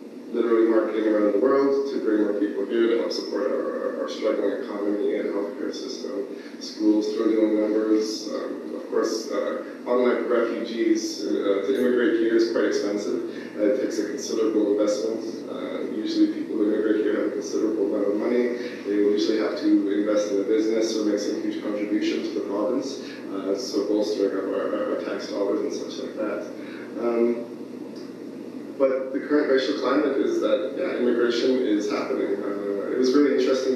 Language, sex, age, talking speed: English, male, 20-39, 180 wpm